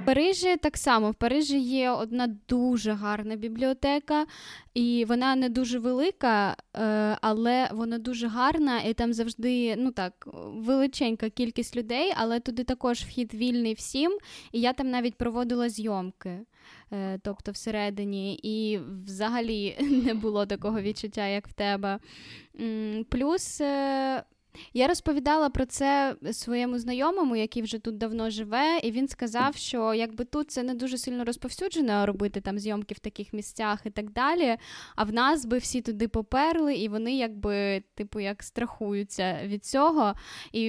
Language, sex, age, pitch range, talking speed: Ukrainian, female, 10-29, 210-255 Hz, 145 wpm